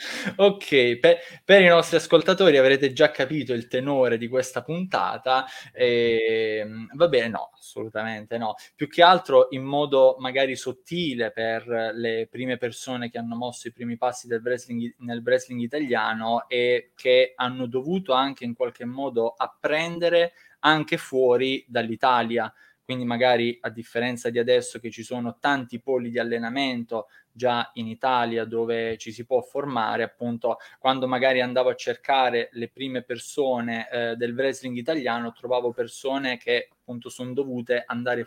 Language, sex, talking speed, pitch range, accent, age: Italian, male, 145 wpm, 120-140 Hz, native, 20-39